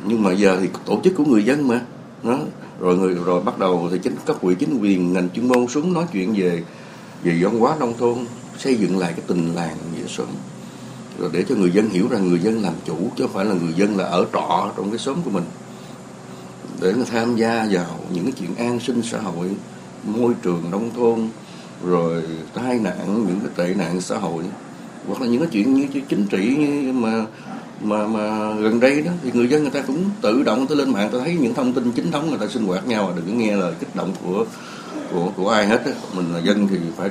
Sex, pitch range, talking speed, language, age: male, 90-125 Hz, 235 wpm, Vietnamese, 60-79